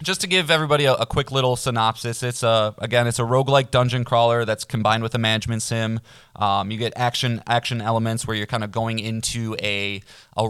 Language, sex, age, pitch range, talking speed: English, male, 20-39, 105-120 Hz, 210 wpm